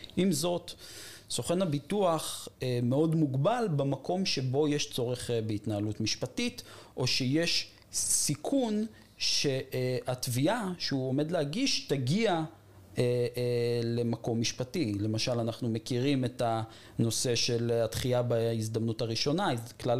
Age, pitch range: 40-59, 115-150 Hz